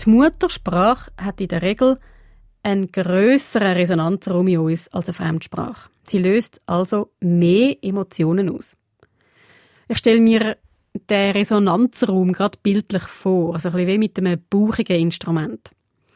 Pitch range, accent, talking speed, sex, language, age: 180-230 Hz, Swiss, 125 wpm, female, German, 30-49